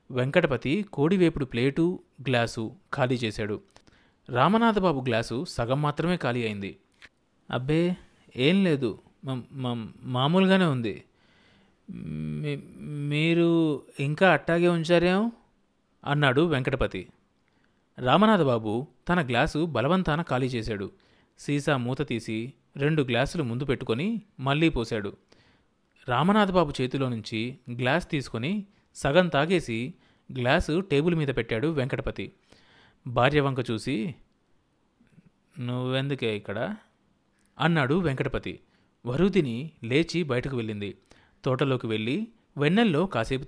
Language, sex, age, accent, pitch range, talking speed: Telugu, male, 30-49, native, 120-165 Hz, 90 wpm